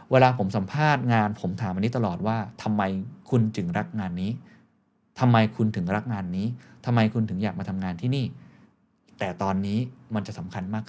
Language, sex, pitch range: Thai, male, 105-150 Hz